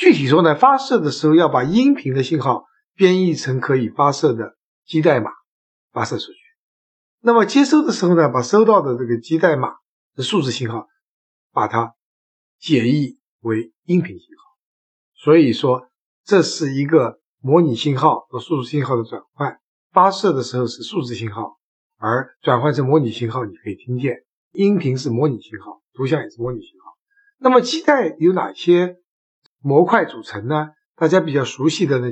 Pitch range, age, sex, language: 130-195 Hz, 60-79, male, Chinese